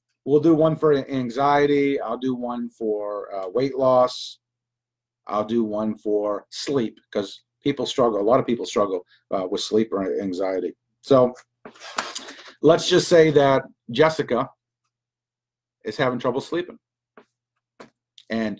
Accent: American